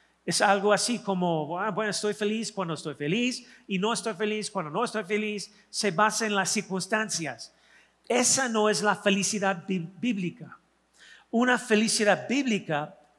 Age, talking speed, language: 40-59, 145 wpm, Spanish